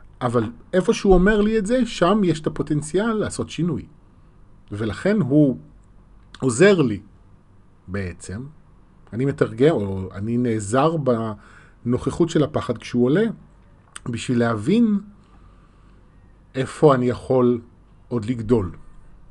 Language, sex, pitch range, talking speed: Hebrew, male, 100-155 Hz, 110 wpm